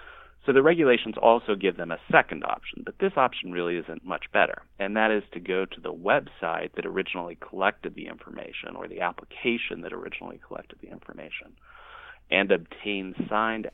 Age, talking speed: 30-49, 175 wpm